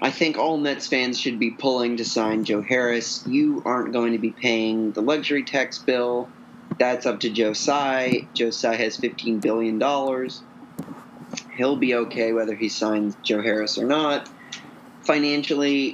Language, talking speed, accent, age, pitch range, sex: English, 160 wpm, American, 30-49, 115-150 Hz, male